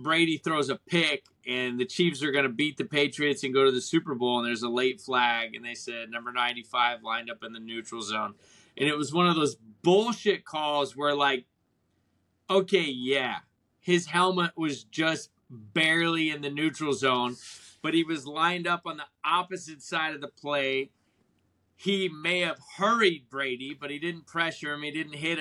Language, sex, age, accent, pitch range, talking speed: English, male, 20-39, American, 130-185 Hz, 190 wpm